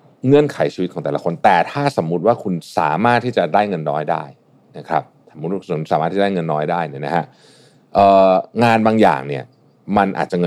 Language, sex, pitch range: Thai, male, 80-115 Hz